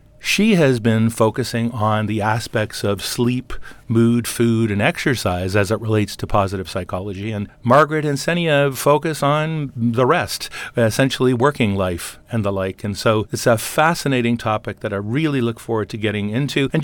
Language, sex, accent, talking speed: English, male, American, 170 wpm